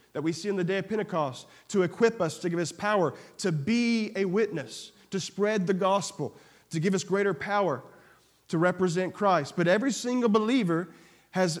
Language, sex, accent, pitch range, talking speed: English, male, American, 190-240 Hz, 185 wpm